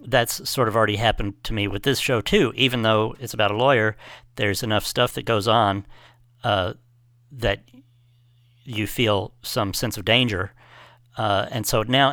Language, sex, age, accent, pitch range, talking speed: English, male, 50-69, American, 110-125 Hz, 175 wpm